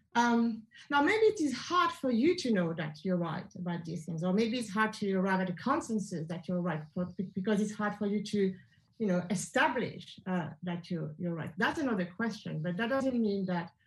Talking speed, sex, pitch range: 215 wpm, female, 185-260 Hz